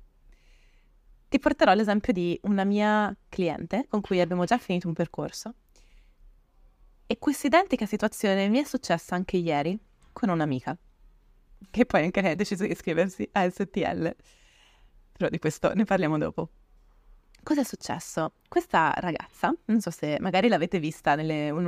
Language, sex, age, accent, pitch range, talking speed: Italian, female, 20-39, native, 155-200 Hz, 145 wpm